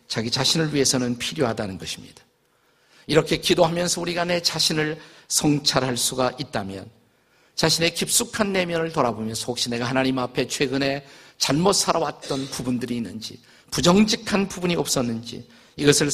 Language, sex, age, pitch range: Korean, male, 50-69, 130-175 Hz